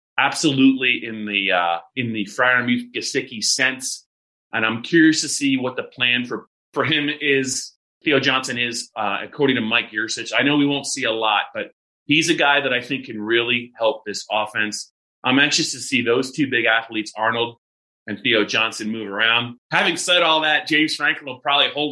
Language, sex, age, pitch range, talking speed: English, male, 30-49, 115-145 Hz, 195 wpm